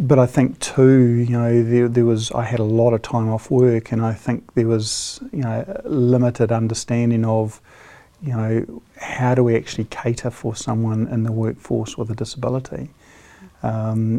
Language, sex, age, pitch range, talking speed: English, male, 50-69, 110-120 Hz, 185 wpm